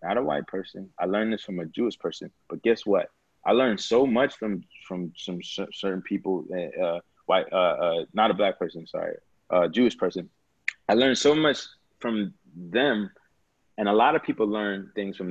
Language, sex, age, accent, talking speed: English, male, 30-49, American, 205 wpm